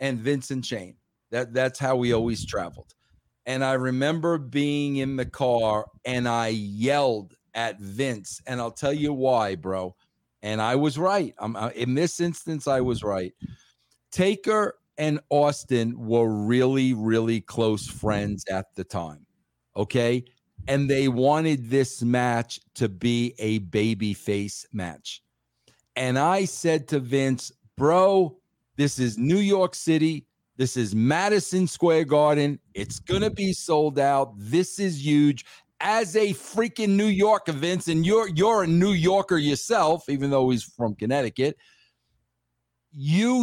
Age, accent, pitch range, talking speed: 50-69, American, 120-190 Hz, 145 wpm